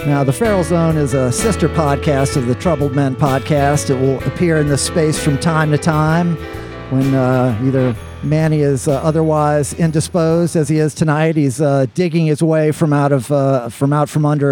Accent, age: American, 50-69